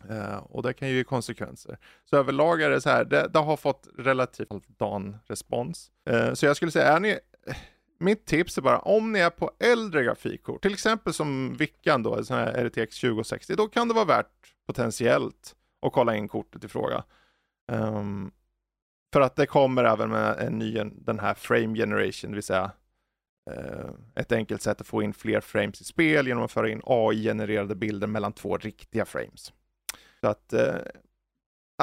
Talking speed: 185 wpm